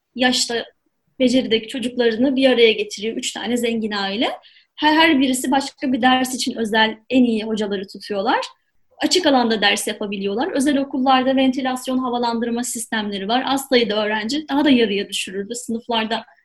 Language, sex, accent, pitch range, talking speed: Turkish, female, native, 235-300 Hz, 145 wpm